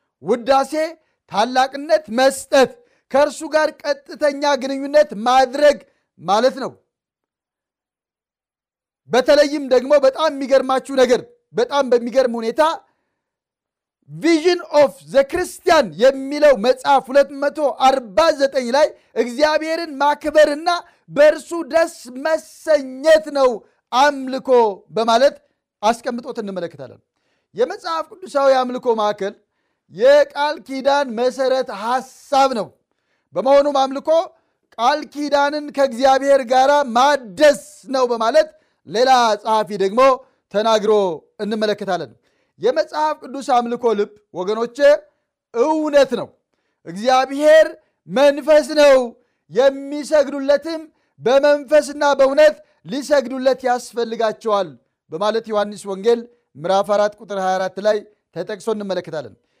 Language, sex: Amharic, male